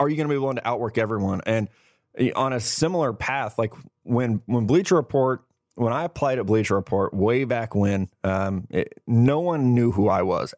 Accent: American